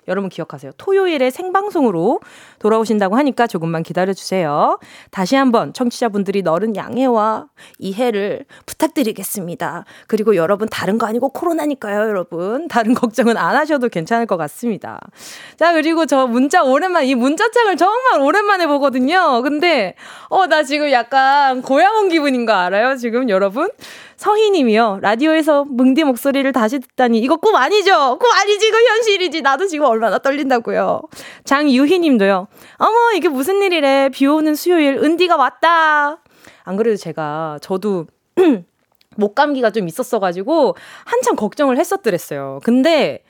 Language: Korean